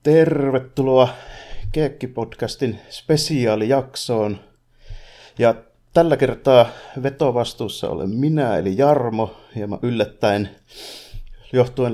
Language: Finnish